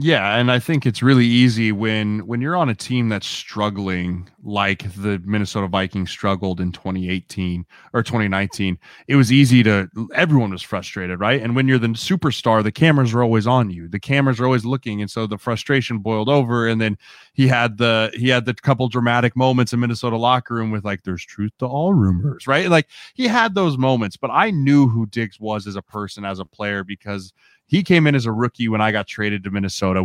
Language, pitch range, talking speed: English, 100-130 Hz, 220 wpm